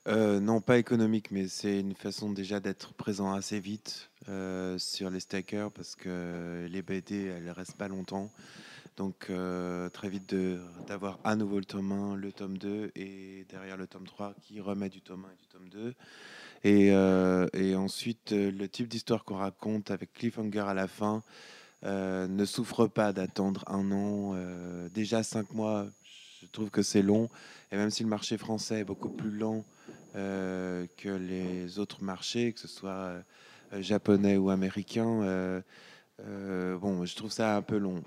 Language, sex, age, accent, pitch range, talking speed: French, male, 20-39, French, 95-105 Hz, 180 wpm